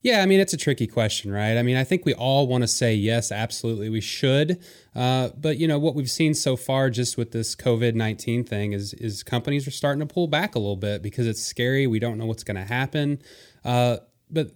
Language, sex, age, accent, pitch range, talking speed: English, male, 20-39, American, 110-135 Hz, 240 wpm